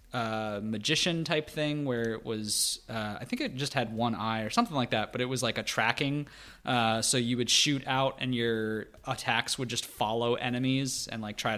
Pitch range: 115-145 Hz